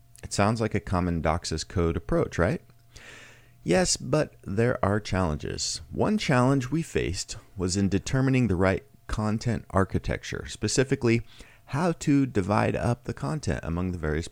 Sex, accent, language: male, American, English